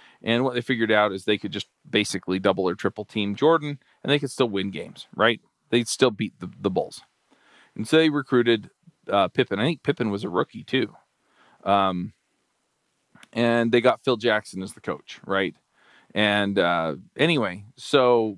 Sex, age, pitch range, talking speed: male, 40-59, 105-125 Hz, 180 wpm